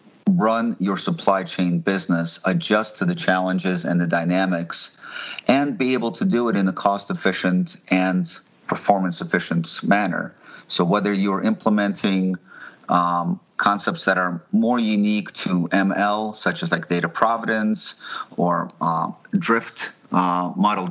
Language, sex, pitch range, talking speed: English, male, 90-115 Hz, 130 wpm